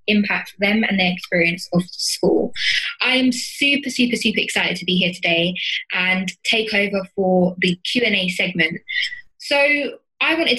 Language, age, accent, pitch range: English, 20-39, British, 185-240 Hz